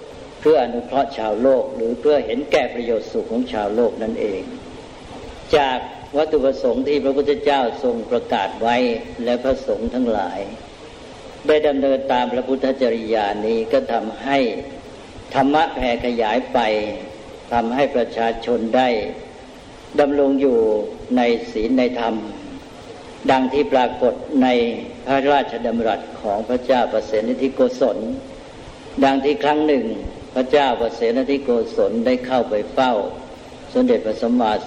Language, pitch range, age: Thai, 115-145 Hz, 70-89